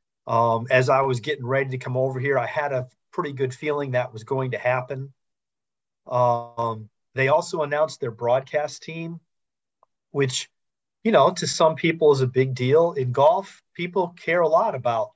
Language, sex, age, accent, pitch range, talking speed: English, male, 40-59, American, 120-150 Hz, 180 wpm